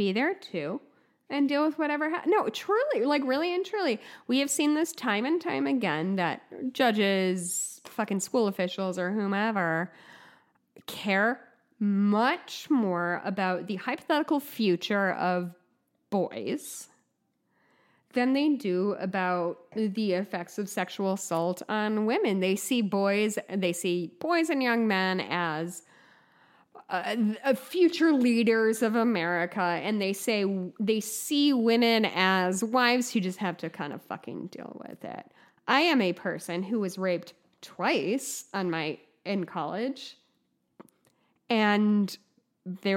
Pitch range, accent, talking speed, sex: 185-255 Hz, American, 135 wpm, female